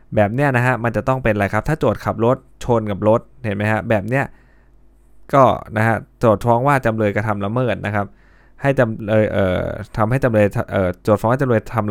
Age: 20-39